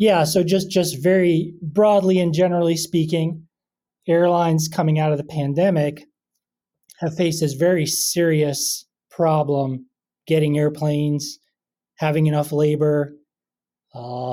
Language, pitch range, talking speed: English, 135-165 Hz, 115 wpm